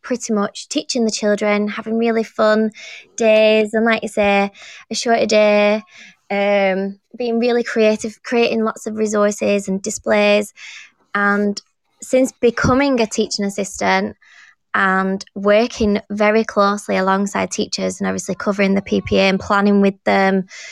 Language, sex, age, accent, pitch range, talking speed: English, female, 20-39, British, 200-230 Hz, 135 wpm